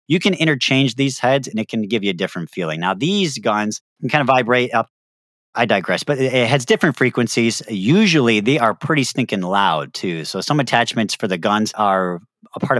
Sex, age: male, 40-59